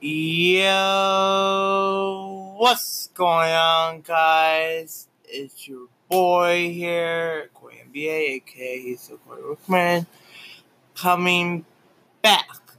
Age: 20-39